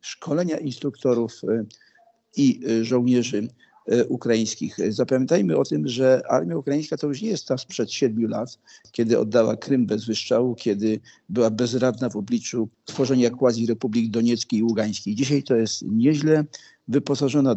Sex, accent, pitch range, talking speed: male, native, 115-145 Hz, 135 wpm